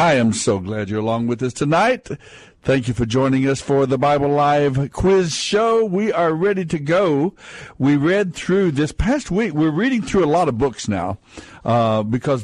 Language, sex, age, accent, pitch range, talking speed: English, male, 60-79, American, 120-150 Hz, 200 wpm